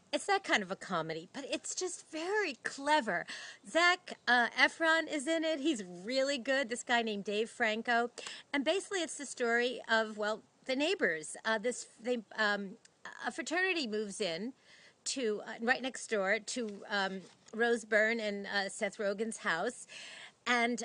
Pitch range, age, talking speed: 210-260 Hz, 40-59, 165 wpm